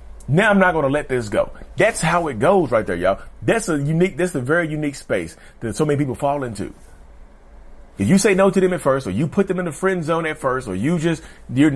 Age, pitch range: 40-59, 110-175 Hz